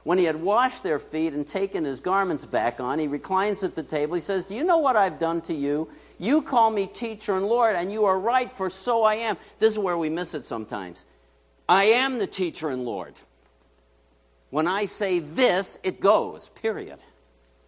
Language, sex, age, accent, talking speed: English, male, 60-79, American, 205 wpm